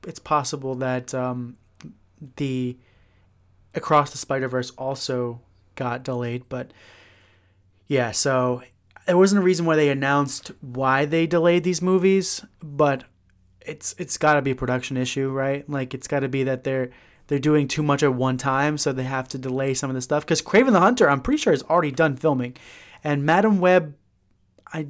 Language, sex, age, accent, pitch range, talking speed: English, male, 20-39, American, 125-160 Hz, 180 wpm